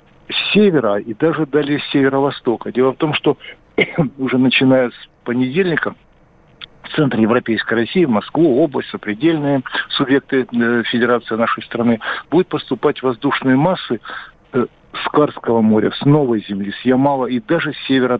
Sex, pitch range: male, 115-140 Hz